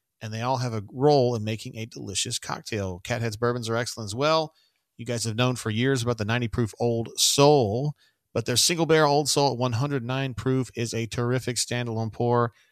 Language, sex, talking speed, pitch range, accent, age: English, male, 205 wpm, 110-135 Hz, American, 40-59